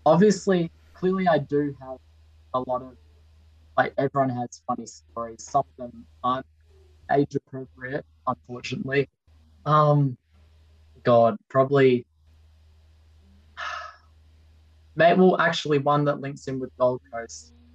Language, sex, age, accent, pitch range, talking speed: English, male, 20-39, Australian, 80-130 Hz, 110 wpm